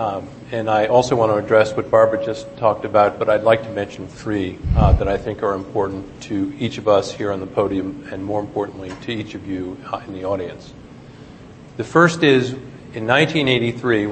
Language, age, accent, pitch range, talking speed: English, 50-69, American, 100-120 Hz, 205 wpm